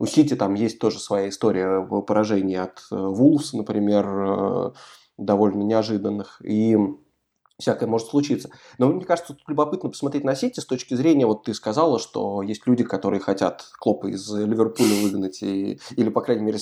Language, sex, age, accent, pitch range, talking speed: Russian, male, 20-39, native, 105-135 Hz, 165 wpm